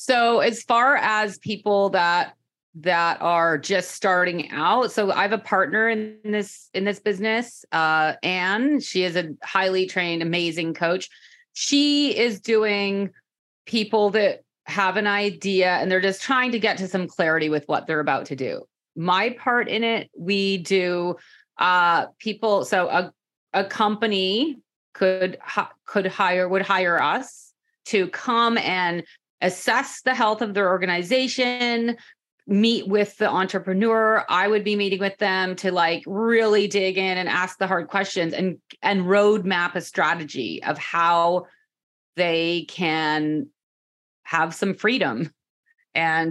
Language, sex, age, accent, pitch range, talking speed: English, female, 30-49, American, 170-215 Hz, 150 wpm